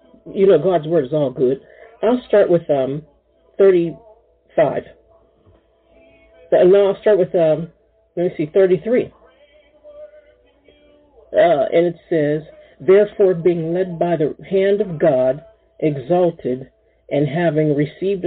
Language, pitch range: English, 155-220 Hz